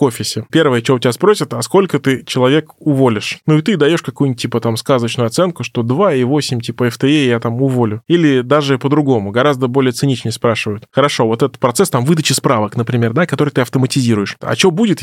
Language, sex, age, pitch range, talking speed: Russian, male, 20-39, 125-150 Hz, 200 wpm